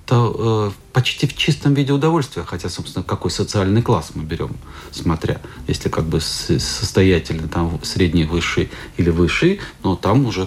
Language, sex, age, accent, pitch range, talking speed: Russian, male, 40-59, native, 90-110 Hz, 150 wpm